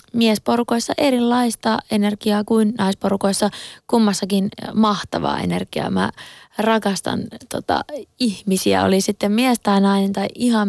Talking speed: 100 wpm